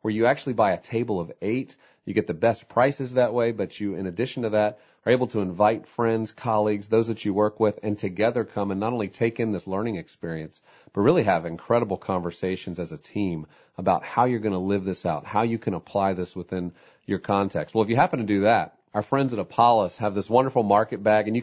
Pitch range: 95-120 Hz